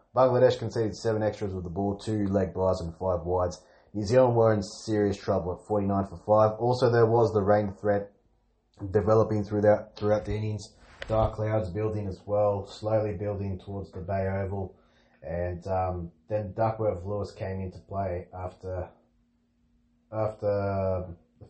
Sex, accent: male, Australian